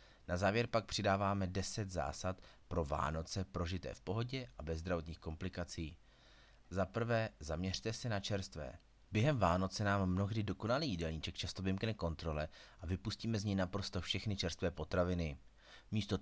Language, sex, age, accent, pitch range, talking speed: Czech, male, 30-49, native, 85-105 Hz, 145 wpm